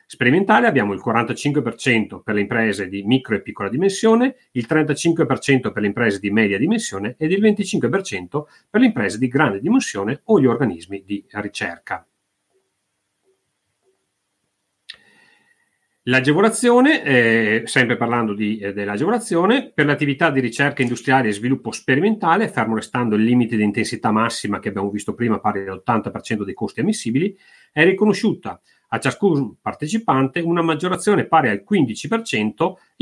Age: 40-59